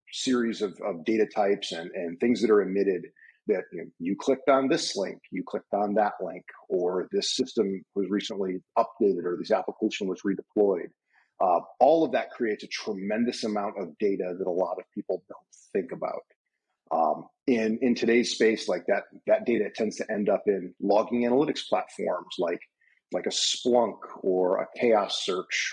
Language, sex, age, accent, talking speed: English, male, 40-59, American, 180 wpm